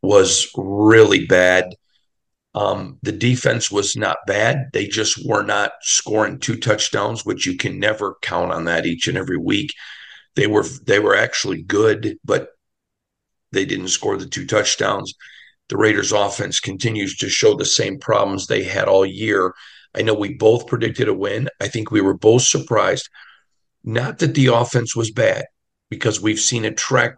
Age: 50-69